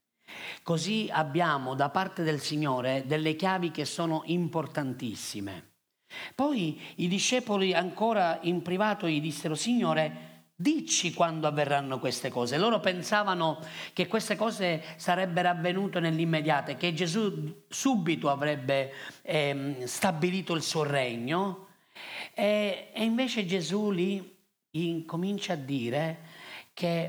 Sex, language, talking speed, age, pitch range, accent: male, Italian, 115 wpm, 40-59, 140-180 Hz, native